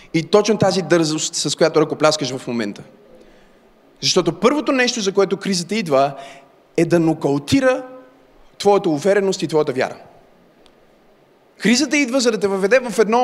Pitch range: 185-255 Hz